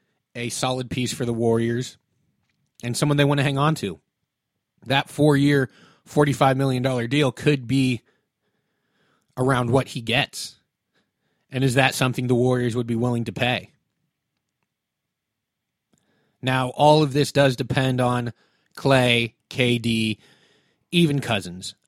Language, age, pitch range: English, 30-49, 120-145 Hz